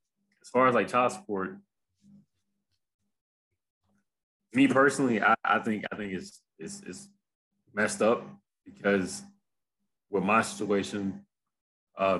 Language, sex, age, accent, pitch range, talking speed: English, male, 20-39, American, 95-130 Hz, 115 wpm